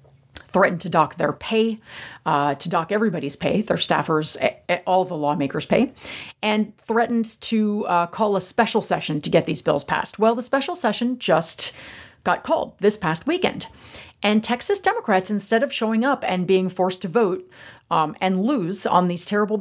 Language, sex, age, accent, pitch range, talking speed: English, female, 40-59, American, 160-225 Hz, 175 wpm